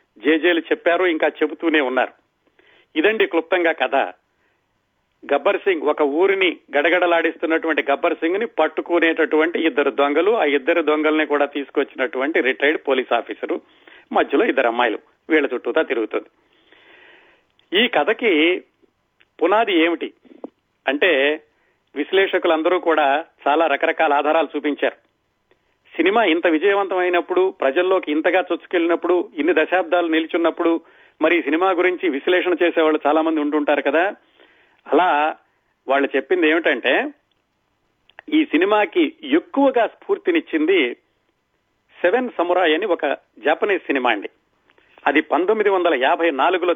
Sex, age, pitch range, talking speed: male, 40-59, 155-215 Hz, 100 wpm